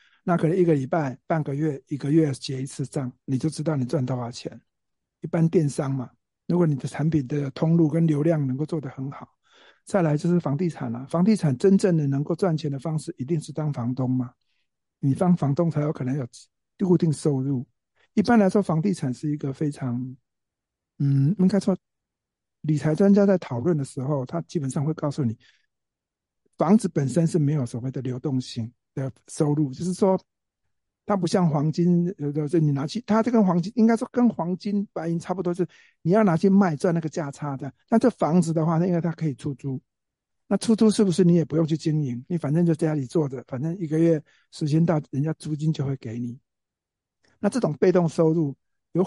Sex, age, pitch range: male, 60-79, 140-175 Hz